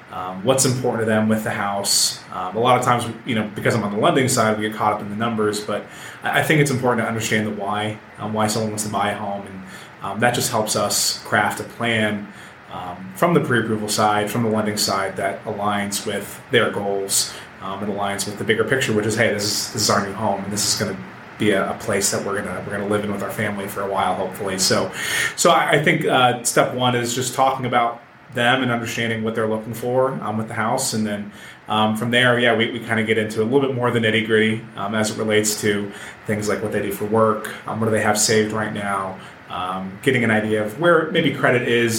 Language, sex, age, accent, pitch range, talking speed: English, male, 20-39, American, 105-120 Hz, 255 wpm